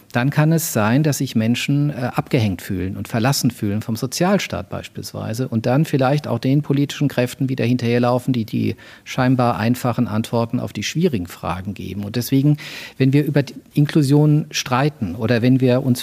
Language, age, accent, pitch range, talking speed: German, 40-59, German, 120-150 Hz, 170 wpm